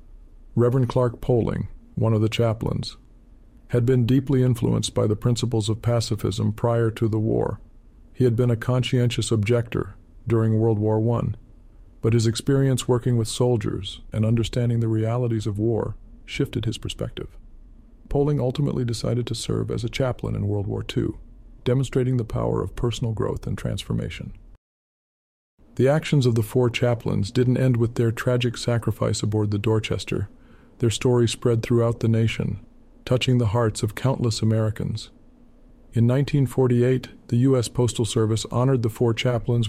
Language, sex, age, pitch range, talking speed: English, male, 50-69, 110-125 Hz, 155 wpm